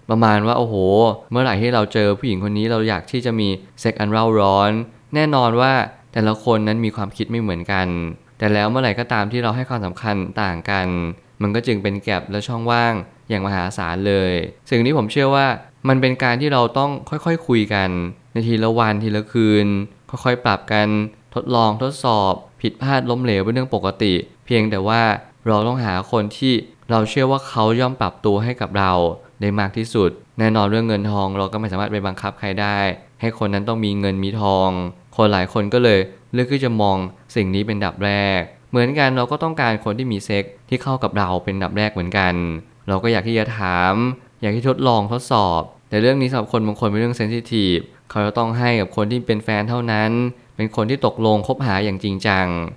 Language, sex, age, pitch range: Thai, male, 20-39, 100-120 Hz